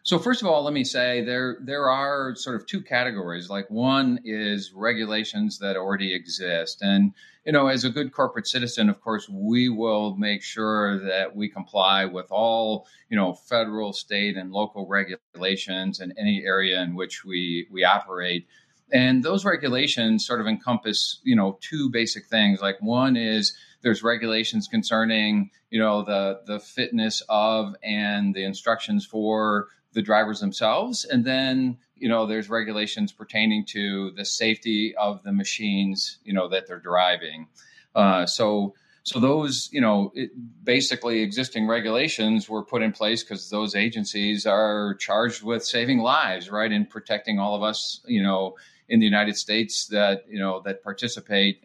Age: 40-59